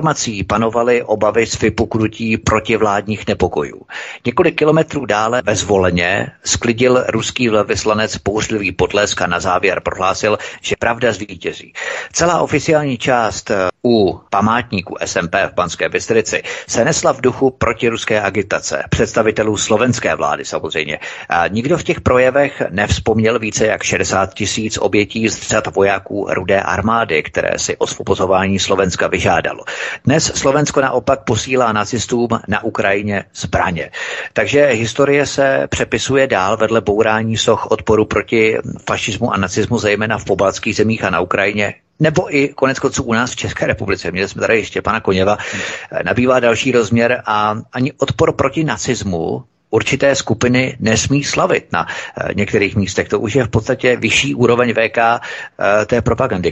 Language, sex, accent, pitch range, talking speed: Czech, male, native, 105-130 Hz, 135 wpm